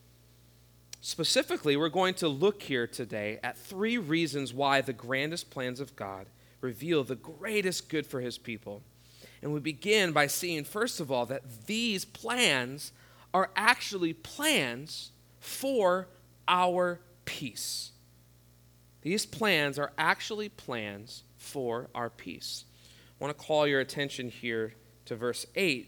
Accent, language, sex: American, English, male